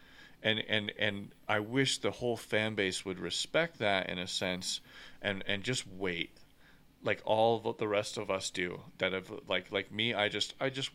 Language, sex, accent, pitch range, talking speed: English, male, American, 100-130 Hz, 195 wpm